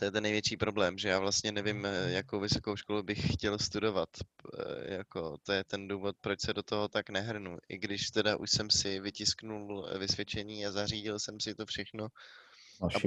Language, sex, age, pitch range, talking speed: Czech, male, 20-39, 100-115 Hz, 190 wpm